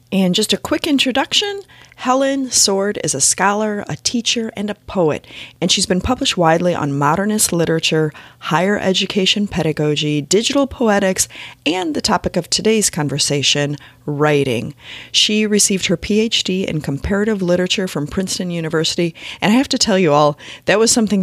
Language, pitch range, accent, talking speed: English, 155-210 Hz, American, 155 wpm